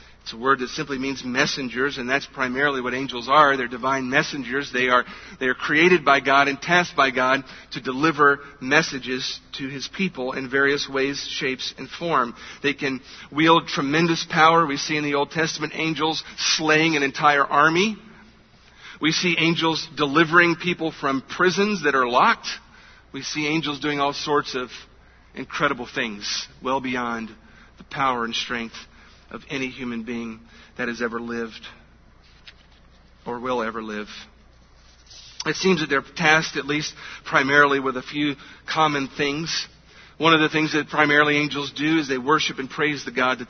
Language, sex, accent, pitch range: English, male, American, 125-155 Hz